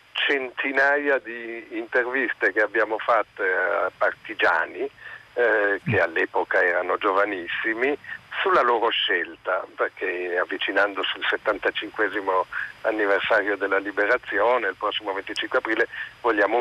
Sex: male